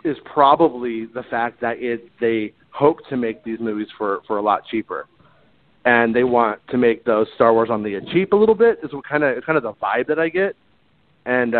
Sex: male